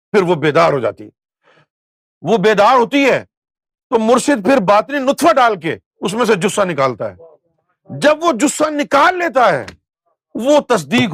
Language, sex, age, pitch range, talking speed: Urdu, male, 50-69, 160-250 Hz, 140 wpm